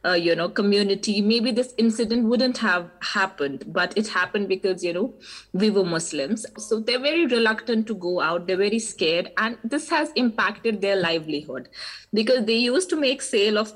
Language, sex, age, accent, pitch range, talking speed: English, female, 20-39, Indian, 180-235 Hz, 185 wpm